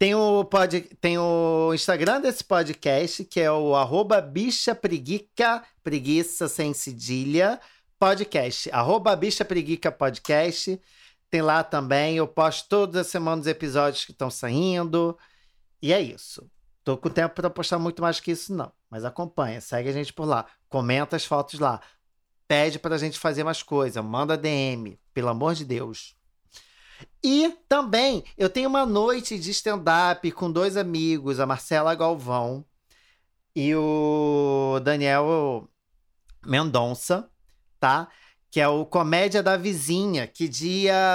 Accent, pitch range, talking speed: Brazilian, 140-185 Hz, 140 wpm